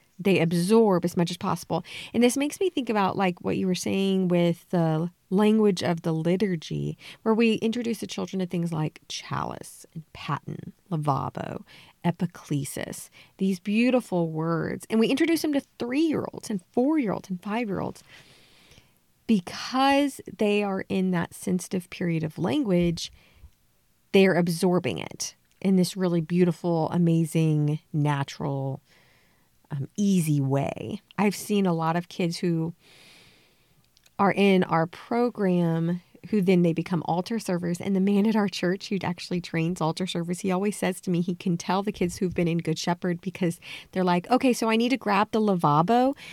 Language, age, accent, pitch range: English, 30-49, American, 170-210 Hz